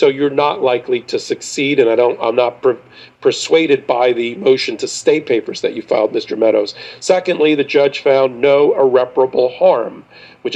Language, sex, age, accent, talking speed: English, male, 40-59, American, 180 wpm